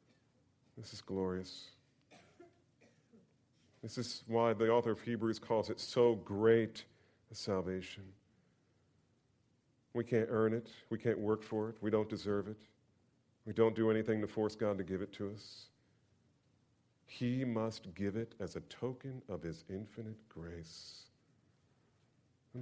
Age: 40-59